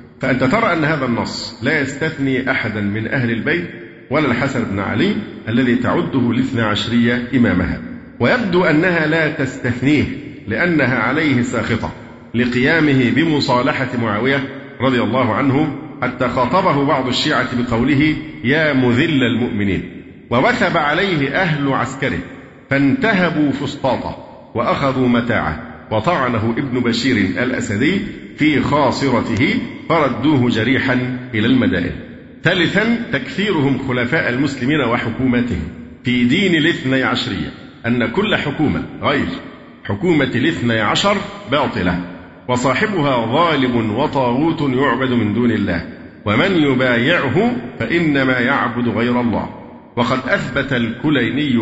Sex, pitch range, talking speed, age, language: male, 120-145 Hz, 105 wpm, 50-69, Arabic